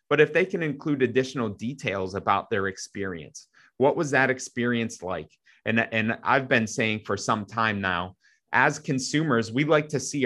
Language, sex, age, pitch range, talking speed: English, male, 30-49, 100-130 Hz, 175 wpm